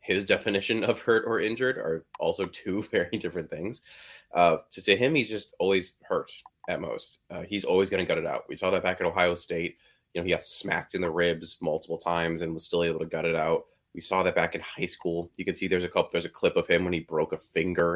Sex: male